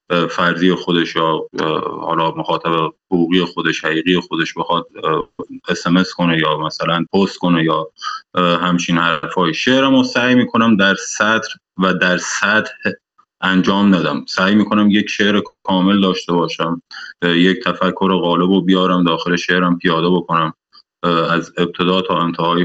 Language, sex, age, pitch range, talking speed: Persian, male, 30-49, 85-95 Hz, 130 wpm